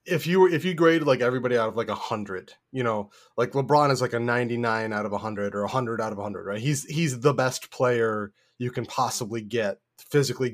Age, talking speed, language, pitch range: 20-39, 245 wpm, English, 120-140 Hz